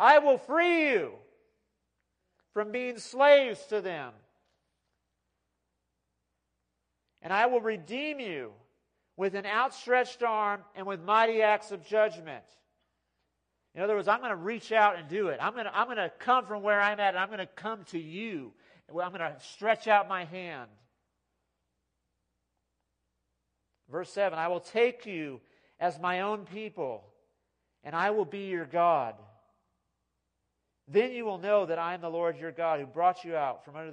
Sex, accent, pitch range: male, American, 140-210 Hz